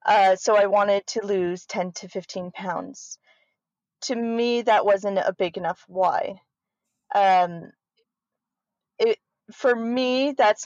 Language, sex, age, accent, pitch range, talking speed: English, female, 30-49, American, 195-240 Hz, 125 wpm